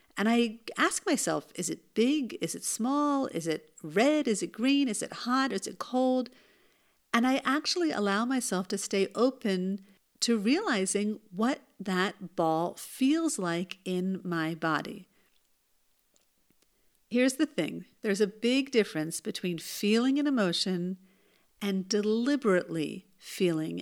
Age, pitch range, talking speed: 50-69, 190-260 Hz, 135 wpm